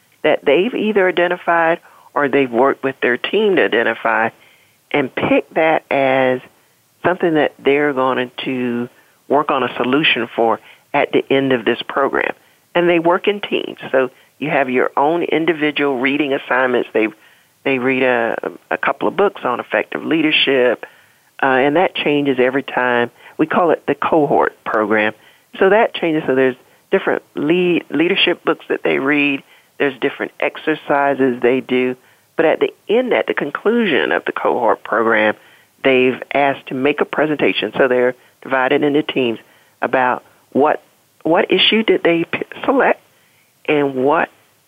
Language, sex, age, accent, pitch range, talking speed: English, male, 40-59, American, 130-165 Hz, 155 wpm